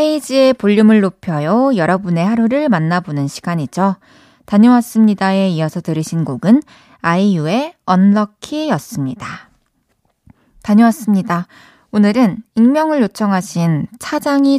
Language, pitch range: Korean, 175-245 Hz